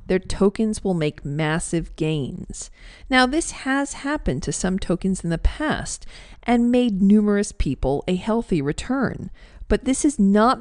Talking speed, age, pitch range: 155 wpm, 50-69, 165-220 Hz